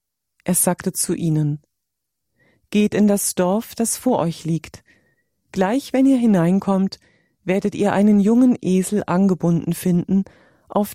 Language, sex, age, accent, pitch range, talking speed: English, female, 40-59, German, 170-215 Hz, 130 wpm